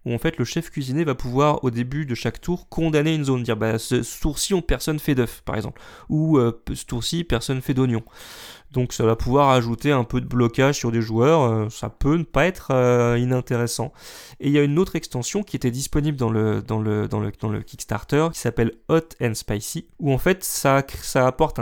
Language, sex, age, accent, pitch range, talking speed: French, male, 20-39, French, 120-155 Hz, 240 wpm